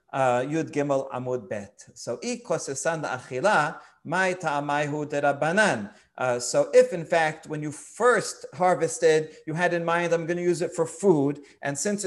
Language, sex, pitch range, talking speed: English, male, 145-180 Hz, 140 wpm